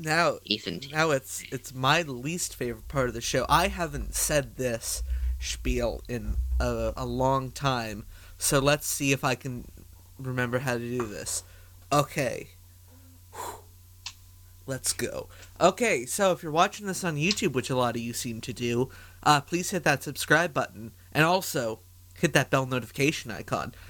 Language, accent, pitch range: English, American, 95-145 Hz